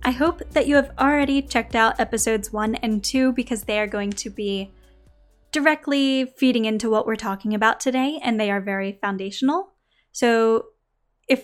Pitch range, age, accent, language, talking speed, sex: 215-275 Hz, 10-29, American, English, 175 wpm, female